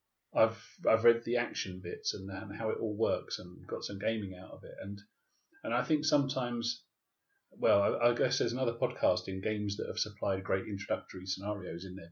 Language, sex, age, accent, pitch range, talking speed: English, male, 30-49, British, 100-115 Hz, 205 wpm